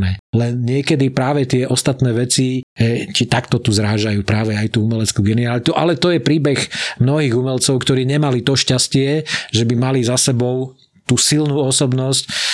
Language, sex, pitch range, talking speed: Slovak, male, 120-140 Hz, 165 wpm